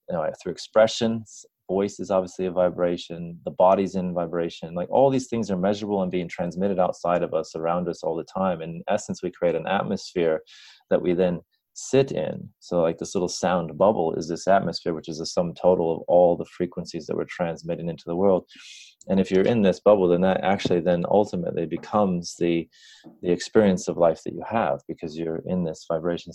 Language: English